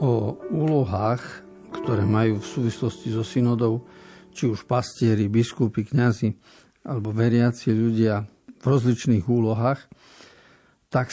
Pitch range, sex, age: 110-130 Hz, male, 50-69